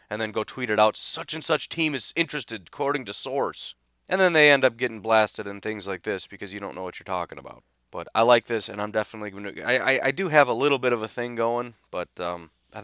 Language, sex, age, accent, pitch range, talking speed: English, male, 30-49, American, 100-135 Hz, 265 wpm